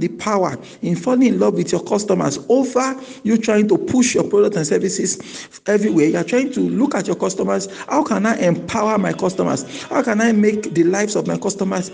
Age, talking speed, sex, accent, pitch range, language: 50-69, 205 wpm, male, Nigerian, 170-230 Hz, English